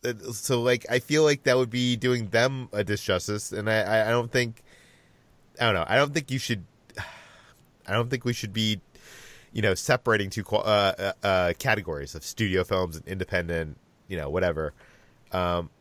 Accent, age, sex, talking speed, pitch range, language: American, 30-49, male, 185 wpm, 100-125 Hz, English